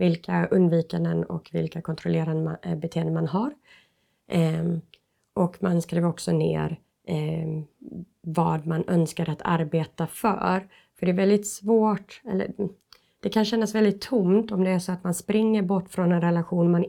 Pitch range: 165-195 Hz